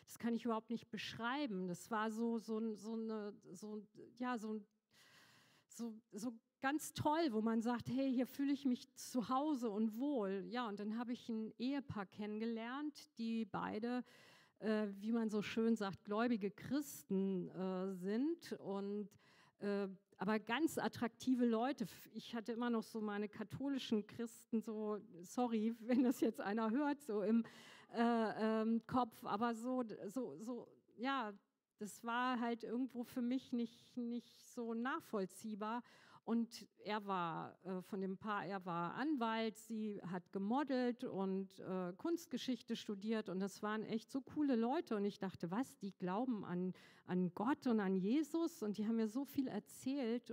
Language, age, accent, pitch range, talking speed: German, 50-69, German, 210-245 Hz, 155 wpm